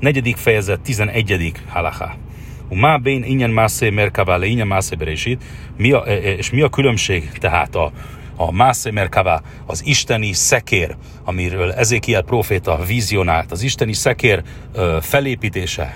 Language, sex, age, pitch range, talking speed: Hungarian, male, 40-59, 95-140 Hz, 115 wpm